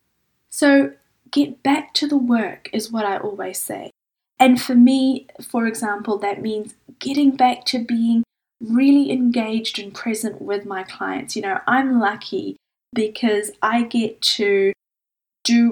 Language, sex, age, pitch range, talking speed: English, female, 10-29, 205-260 Hz, 145 wpm